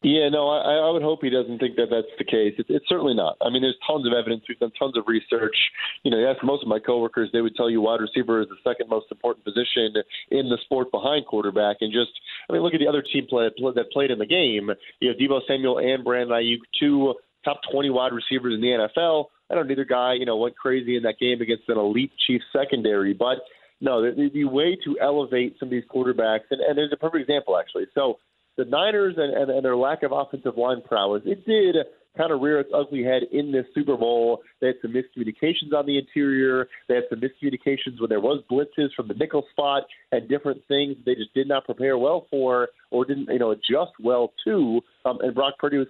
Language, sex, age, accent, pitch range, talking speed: English, male, 30-49, American, 120-145 Hz, 240 wpm